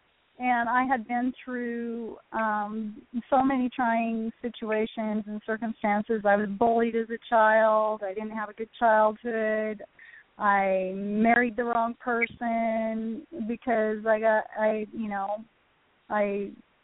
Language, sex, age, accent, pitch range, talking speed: English, female, 30-49, American, 215-245 Hz, 130 wpm